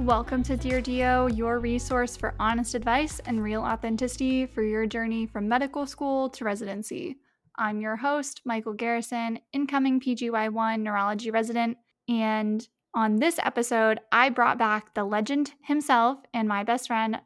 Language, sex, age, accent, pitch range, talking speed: English, female, 10-29, American, 220-255 Hz, 150 wpm